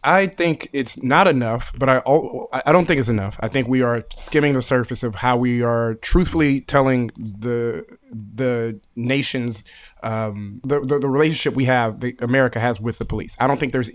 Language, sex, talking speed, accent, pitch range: English, male, 195 wpm, American, 115-140 Hz